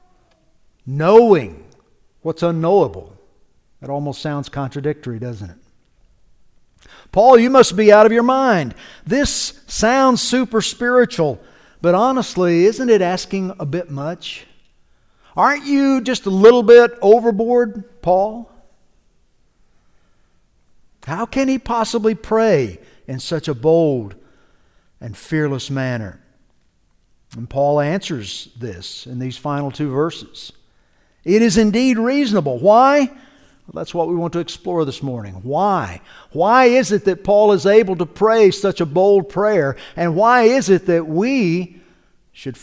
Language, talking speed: English, 130 wpm